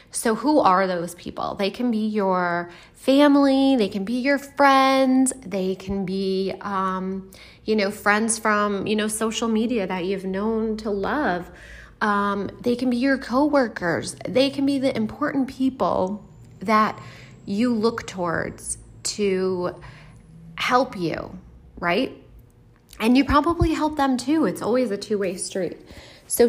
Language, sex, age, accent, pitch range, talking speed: English, female, 30-49, American, 185-255 Hz, 145 wpm